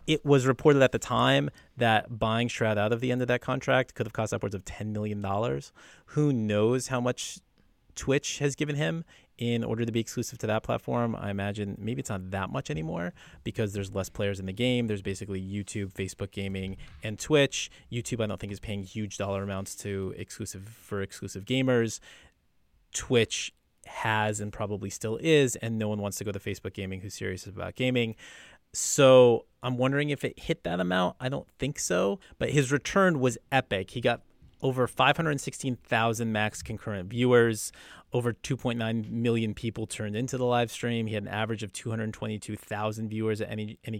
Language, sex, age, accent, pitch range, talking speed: English, male, 30-49, American, 100-125 Hz, 185 wpm